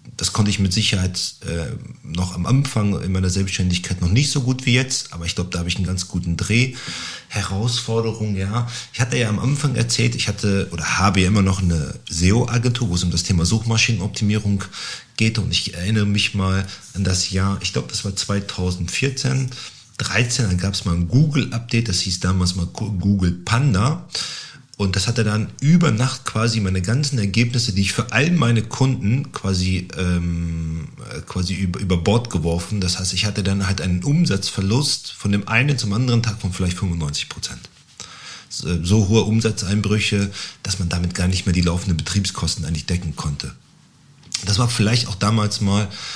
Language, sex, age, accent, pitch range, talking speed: German, male, 40-59, German, 90-115 Hz, 185 wpm